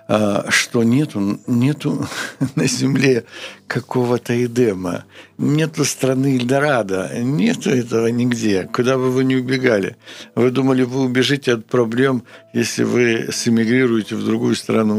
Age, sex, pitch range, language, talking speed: 60-79, male, 105-130 Hz, Ukrainian, 120 wpm